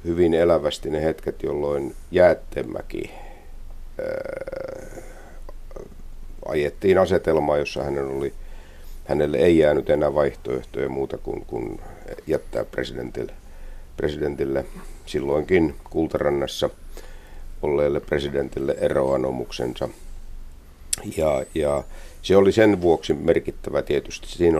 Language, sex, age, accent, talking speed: Finnish, male, 50-69, native, 90 wpm